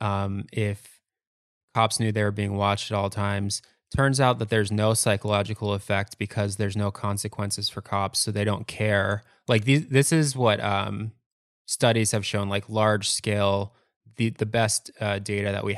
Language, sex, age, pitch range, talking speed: English, male, 20-39, 100-110 Hz, 180 wpm